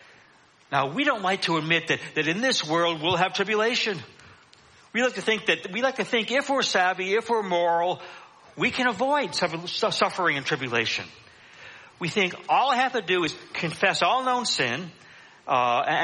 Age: 60-79